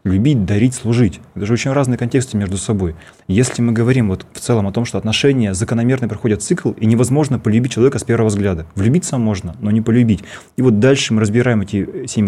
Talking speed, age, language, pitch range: 205 wpm, 20-39, Russian, 105-125 Hz